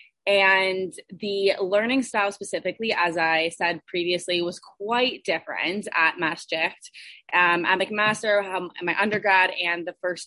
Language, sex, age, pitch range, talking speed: English, female, 20-39, 165-200 Hz, 135 wpm